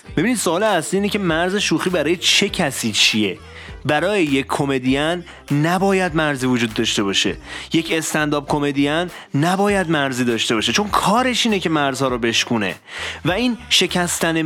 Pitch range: 140-205 Hz